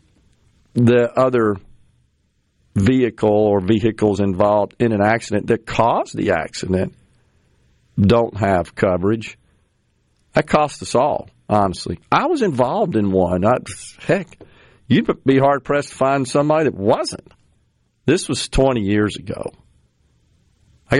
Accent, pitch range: American, 95-120 Hz